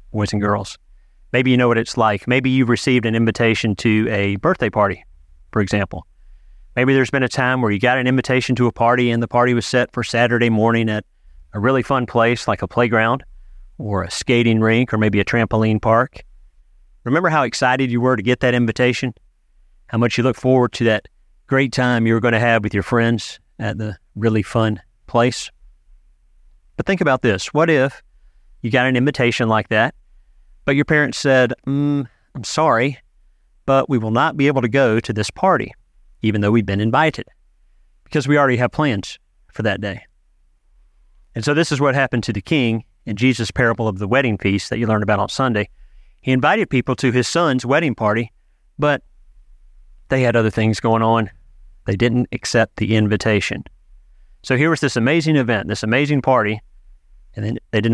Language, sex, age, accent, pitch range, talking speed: English, male, 30-49, American, 100-125 Hz, 195 wpm